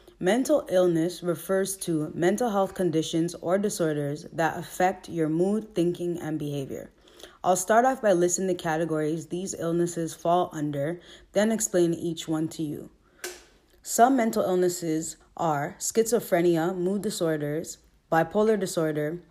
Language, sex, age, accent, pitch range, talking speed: English, female, 20-39, American, 160-195 Hz, 130 wpm